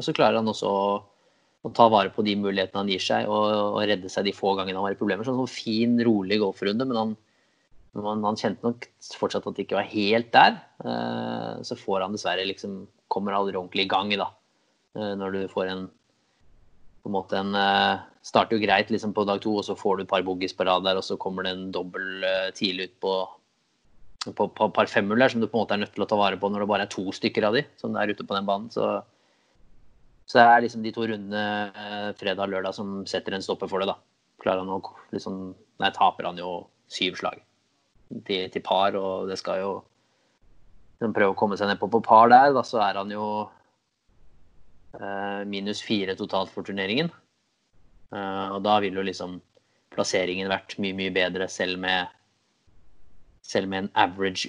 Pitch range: 95-105 Hz